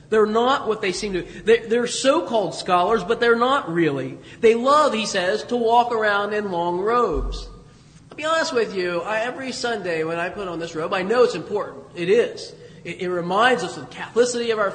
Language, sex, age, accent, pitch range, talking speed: English, male, 30-49, American, 175-240 Hz, 205 wpm